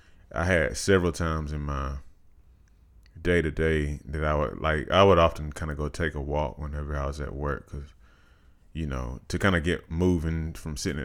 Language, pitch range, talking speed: English, 75-90 Hz, 200 wpm